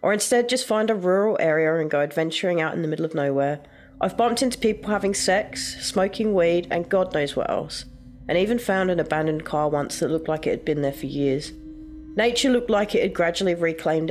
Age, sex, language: 30-49, female, English